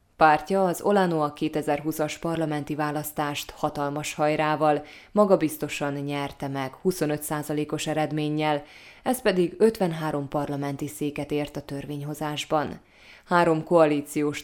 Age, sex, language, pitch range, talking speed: 20-39, female, Hungarian, 140-160 Hz, 95 wpm